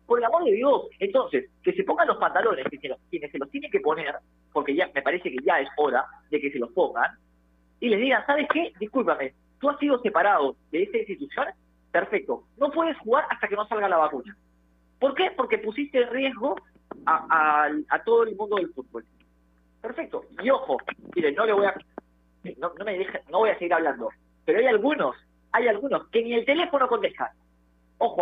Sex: male